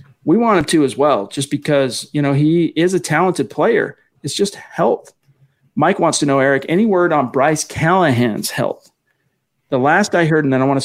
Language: English